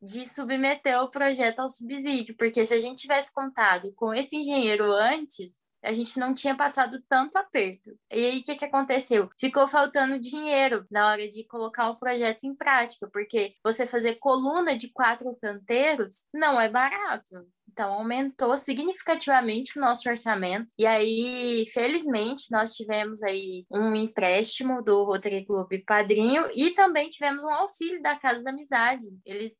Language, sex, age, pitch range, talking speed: Portuguese, female, 10-29, 210-265 Hz, 155 wpm